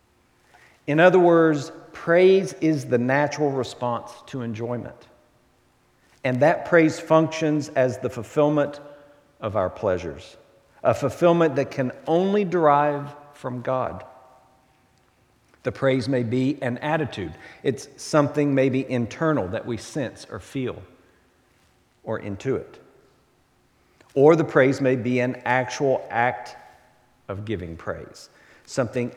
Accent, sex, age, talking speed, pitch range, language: American, male, 50-69, 115 wpm, 115-145 Hz, English